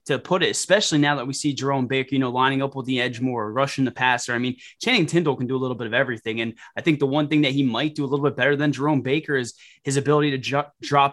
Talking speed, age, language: 290 wpm, 20-39, English